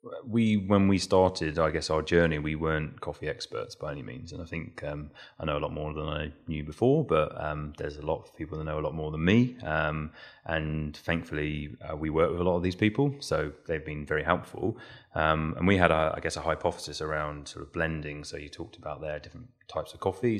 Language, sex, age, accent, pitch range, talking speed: English, male, 30-49, British, 75-85 Hz, 240 wpm